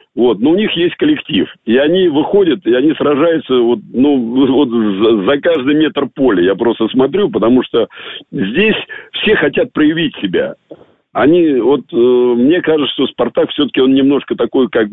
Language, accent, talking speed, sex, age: Russian, native, 165 wpm, male, 50-69